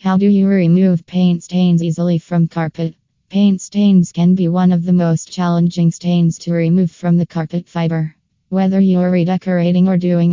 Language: English